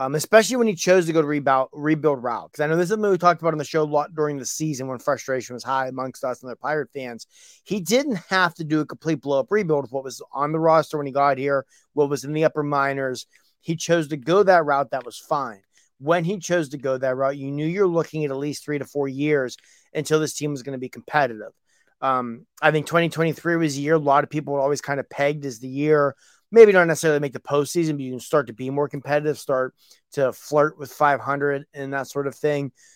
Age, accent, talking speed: 30-49, American, 260 wpm